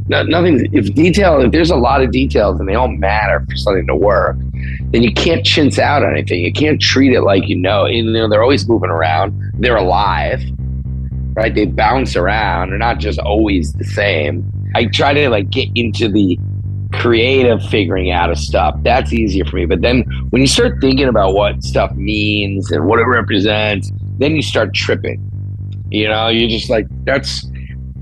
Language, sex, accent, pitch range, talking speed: English, male, American, 75-110 Hz, 190 wpm